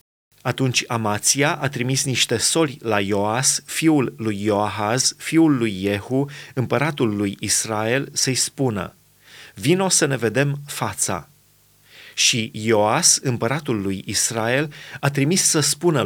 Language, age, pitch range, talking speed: Romanian, 30-49, 115-155 Hz, 125 wpm